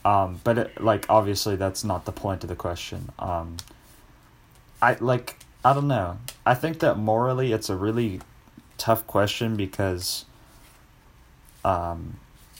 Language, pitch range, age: English, 95-115 Hz, 20-39